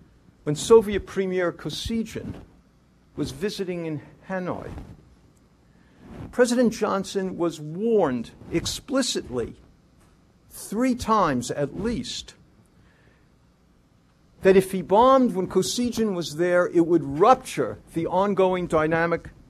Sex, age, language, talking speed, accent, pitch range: male, 50-69, English, 95 wpm, American, 155-210 Hz